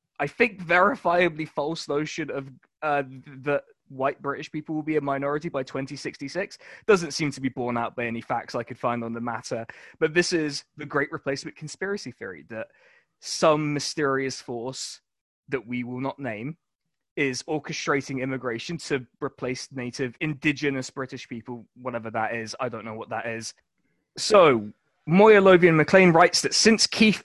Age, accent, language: 20-39, British, English